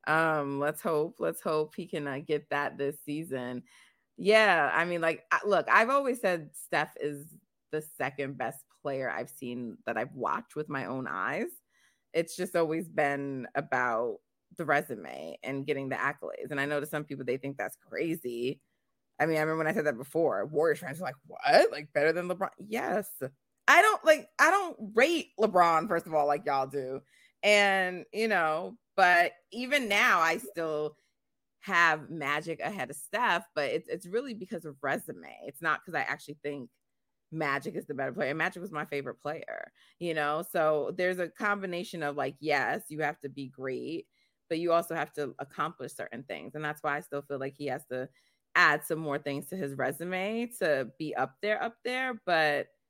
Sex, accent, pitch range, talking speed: female, American, 140-180 Hz, 190 wpm